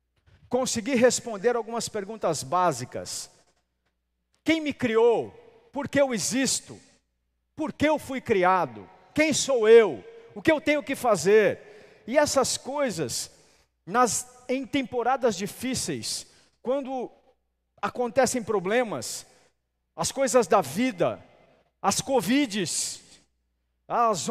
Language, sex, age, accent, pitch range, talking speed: Portuguese, male, 50-69, Brazilian, 150-250 Hz, 105 wpm